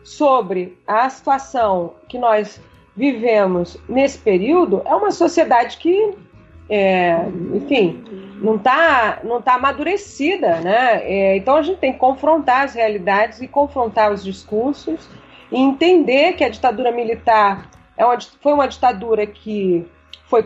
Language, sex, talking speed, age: Portuguese, female, 135 wpm, 40-59